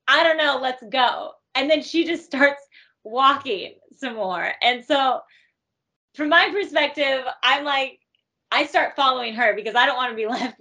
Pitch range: 215-300 Hz